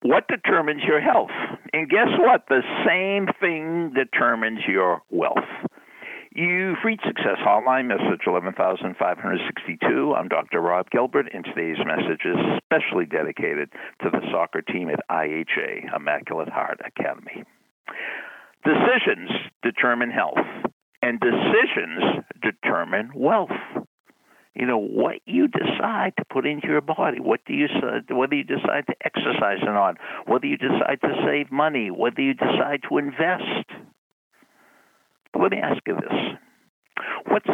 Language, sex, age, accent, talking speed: English, male, 60-79, American, 135 wpm